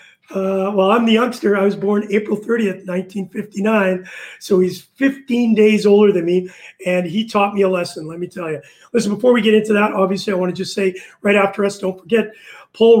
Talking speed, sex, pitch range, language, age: 210 wpm, male, 185-210 Hz, English, 40-59